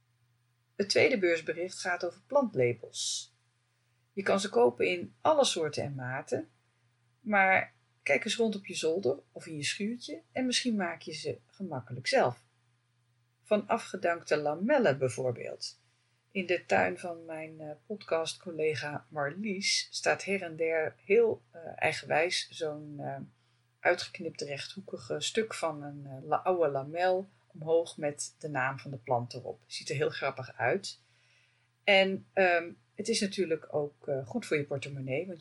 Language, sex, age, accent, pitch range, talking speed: Dutch, female, 40-59, Dutch, 125-195 Hz, 140 wpm